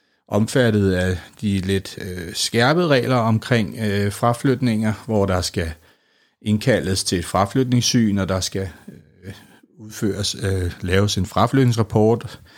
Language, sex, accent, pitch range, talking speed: Danish, male, native, 100-130 Hz, 125 wpm